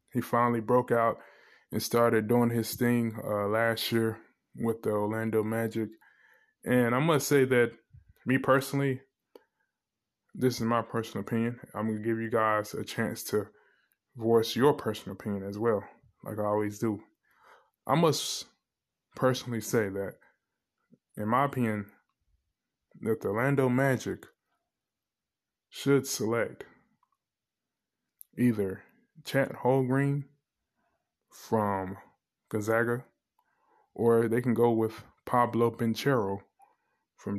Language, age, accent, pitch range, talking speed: English, 20-39, American, 105-125 Hz, 120 wpm